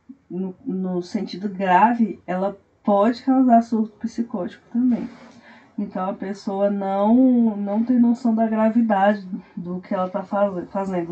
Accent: Brazilian